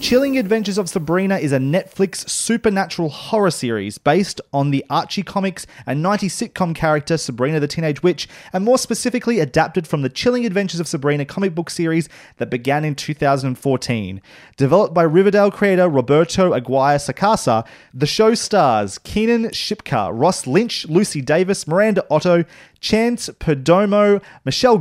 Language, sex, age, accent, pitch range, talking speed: English, male, 30-49, Australian, 135-190 Hz, 145 wpm